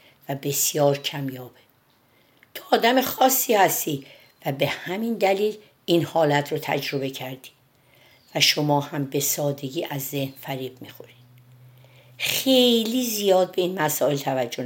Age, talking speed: 50-69, 125 wpm